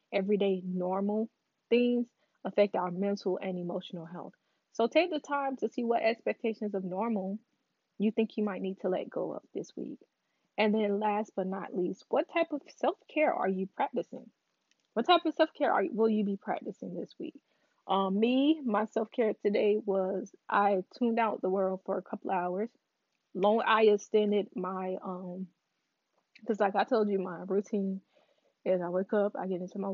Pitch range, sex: 190-230 Hz, female